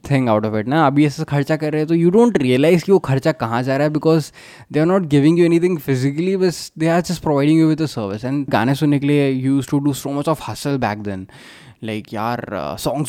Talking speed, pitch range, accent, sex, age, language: 255 wpm, 115-145 Hz, native, male, 20-39, Hindi